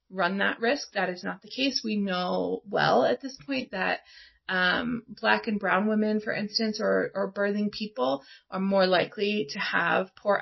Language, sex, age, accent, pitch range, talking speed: English, female, 30-49, American, 195-245 Hz, 180 wpm